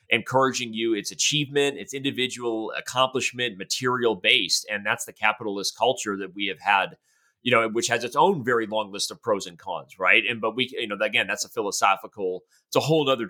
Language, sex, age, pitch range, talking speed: English, male, 30-49, 105-130 Hz, 205 wpm